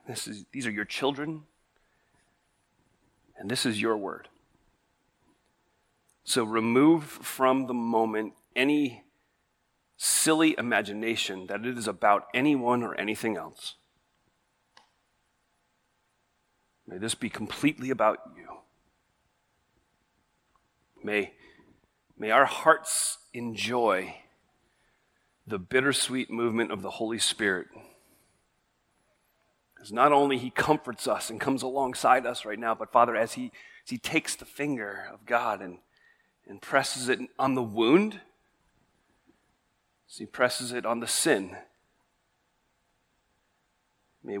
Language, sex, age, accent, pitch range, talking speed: English, male, 40-59, American, 110-140 Hz, 110 wpm